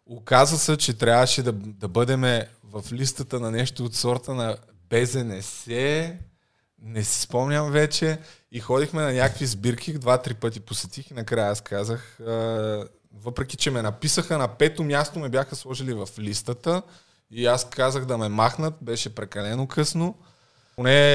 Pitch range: 110-145 Hz